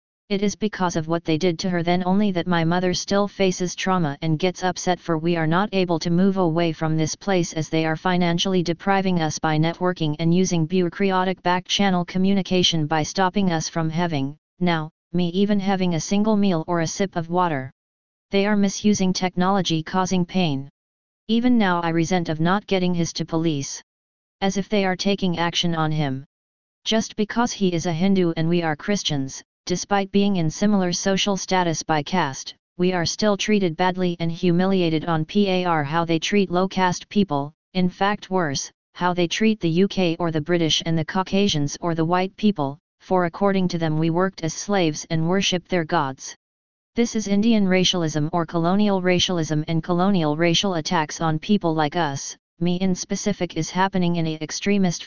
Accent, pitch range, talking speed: American, 165-190 Hz, 185 wpm